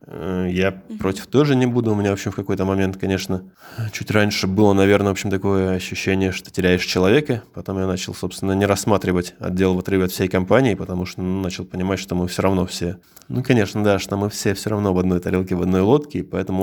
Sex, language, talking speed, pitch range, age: male, Russian, 215 wpm, 90-100 Hz, 20-39